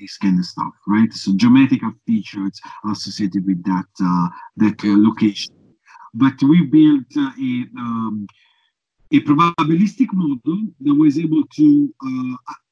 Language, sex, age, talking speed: English, male, 50-69, 135 wpm